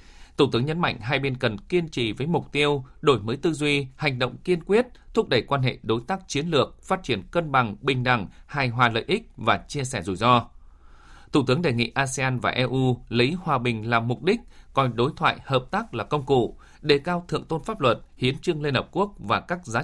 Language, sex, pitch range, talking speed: Vietnamese, male, 115-145 Hz, 235 wpm